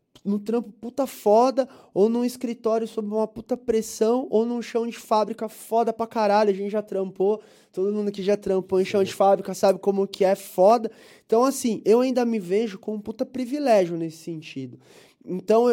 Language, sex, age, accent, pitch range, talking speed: Portuguese, male, 20-39, Brazilian, 180-230 Hz, 190 wpm